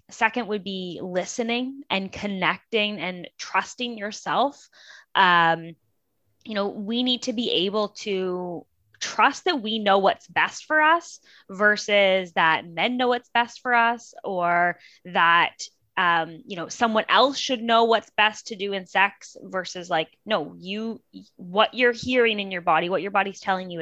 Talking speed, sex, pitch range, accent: 160 wpm, female, 180-235 Hz, American